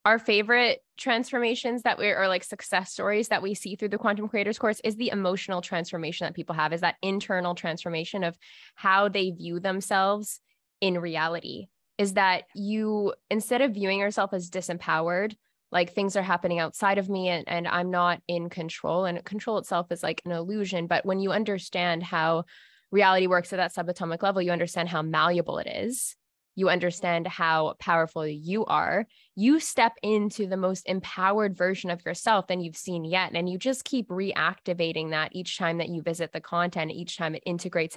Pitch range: 170-205 Hz